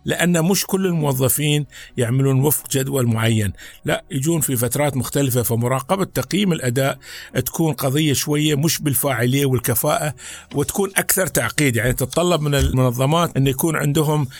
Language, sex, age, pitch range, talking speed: Arabic, male, 50-69, 130-175 Hz, 135 wpm